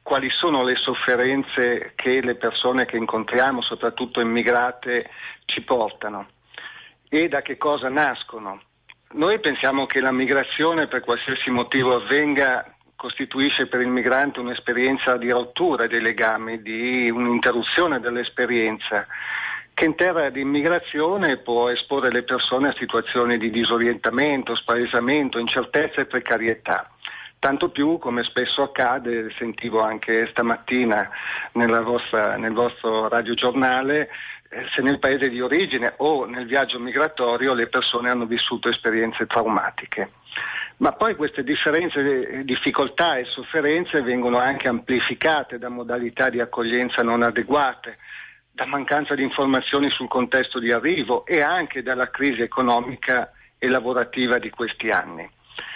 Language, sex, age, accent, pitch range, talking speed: Italian, male, 40-59, native, 120-135 Hz, 130 wpm